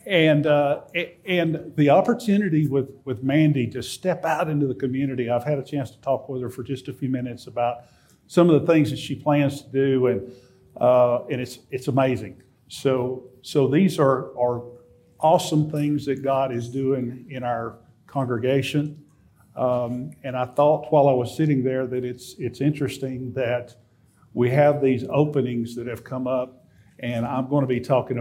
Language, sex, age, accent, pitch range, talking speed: English, male, 50-69, American, 125-145 Hz, 180 wpm